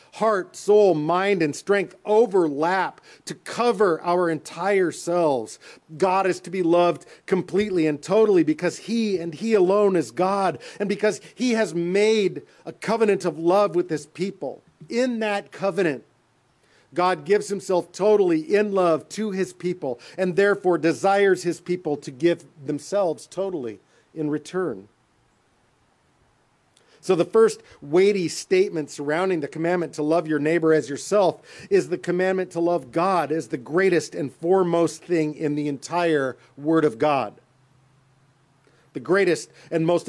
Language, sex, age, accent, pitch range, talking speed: English, male, 50-69, American, 140-190 Hz, 145 wpm